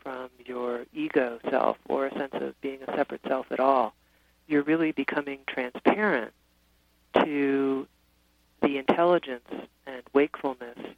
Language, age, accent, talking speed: English, 40-59, American, 125 wpm